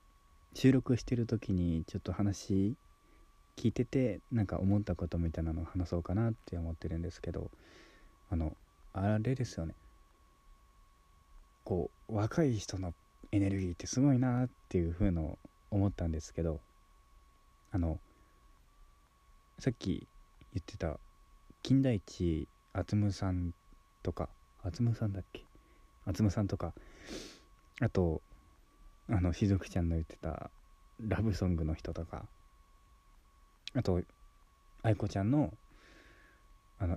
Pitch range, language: 85-110 Hz, Japanese